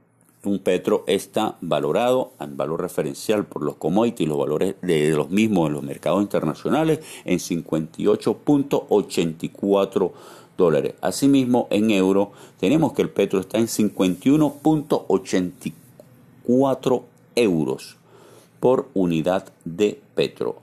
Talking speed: 110 wpm